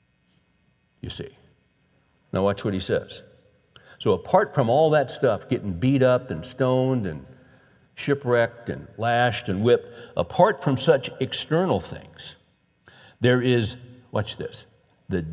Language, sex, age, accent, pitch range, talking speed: English, male, 60-79, American, 95-135 Hz, 135 wpm